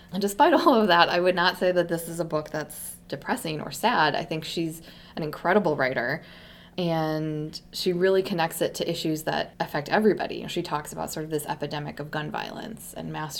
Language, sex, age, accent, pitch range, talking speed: English, female, 20-39, American, 155-180 Hz, 205 wpm